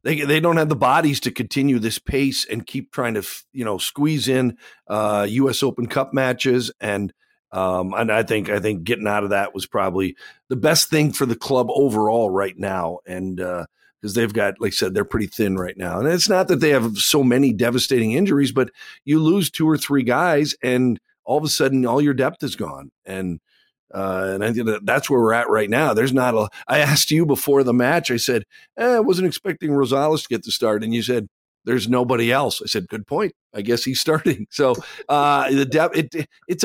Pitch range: 105-145 Hz